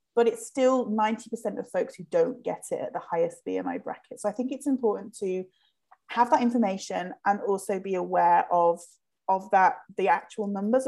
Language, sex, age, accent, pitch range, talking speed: English, female, 30-49, British, 185-260 Hz, 190 wpm